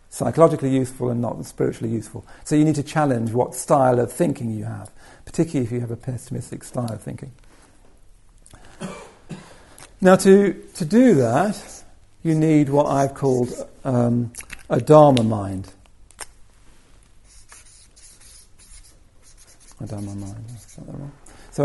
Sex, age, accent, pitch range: male, 50-69, British, 120-165 Hz